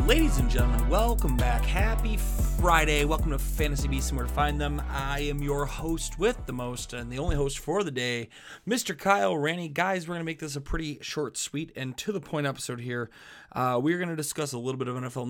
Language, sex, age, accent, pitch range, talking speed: English, male, 30-49, American, 125-165 Hz, 220 wpm